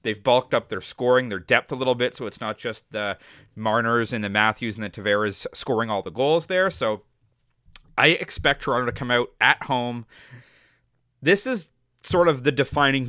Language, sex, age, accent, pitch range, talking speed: English, male, 30-49, American, 115-150 Hz, 195 wpm